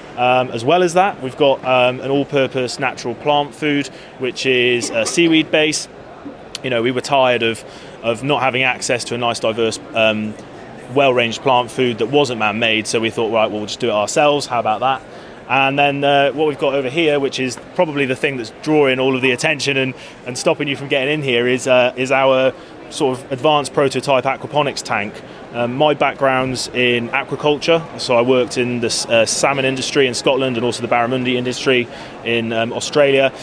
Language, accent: English, British